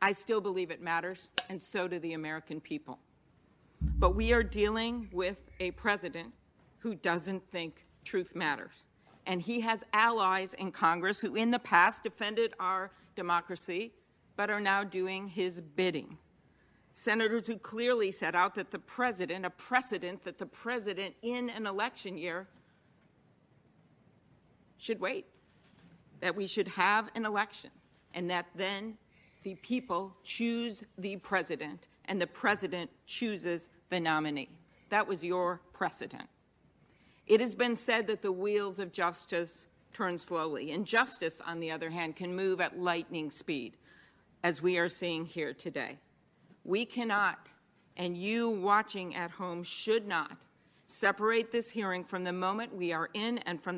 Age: 50-69